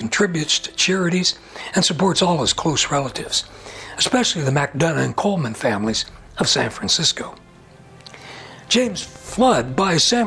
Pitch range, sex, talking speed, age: 150-210 Hz, male, 130 wpm, 60-79